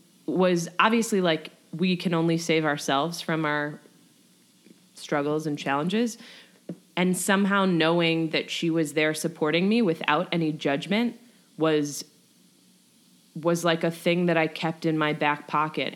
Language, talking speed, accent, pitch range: English, 140 wpm, American, 150-175 Hz